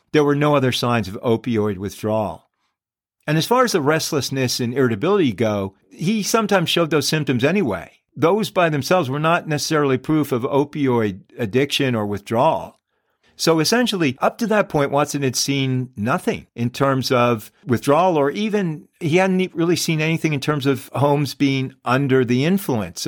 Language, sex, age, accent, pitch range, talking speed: English, male, 50-69, American, 120-150 Hz, 165 wpm